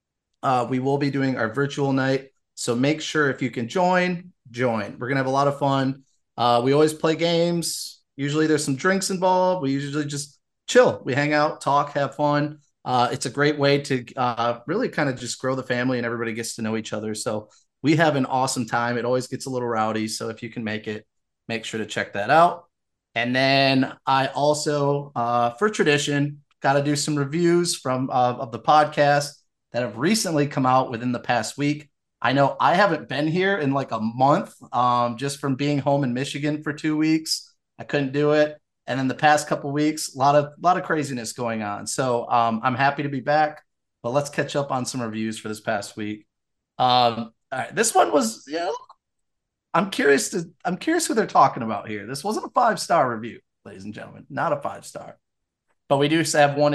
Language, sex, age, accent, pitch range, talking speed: English, male, 30-49, American, 120-150 Hz, 220 wpm